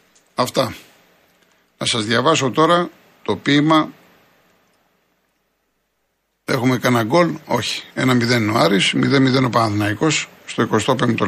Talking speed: 105 wpm